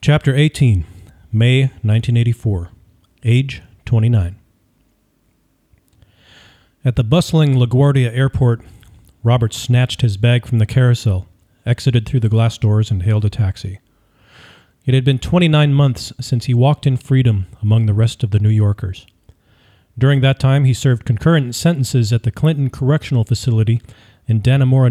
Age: 40-59